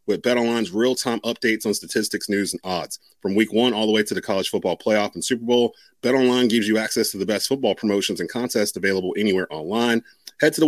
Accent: American